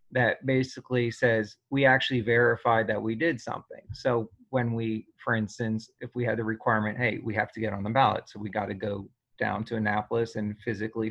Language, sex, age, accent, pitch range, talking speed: English, male, 30-49, American, 110-125 Hz, 205 wpm